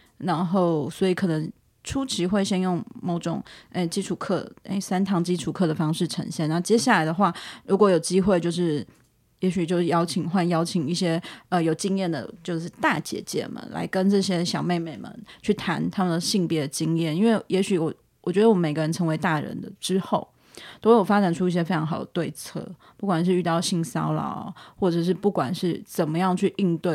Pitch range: 165-200 Hz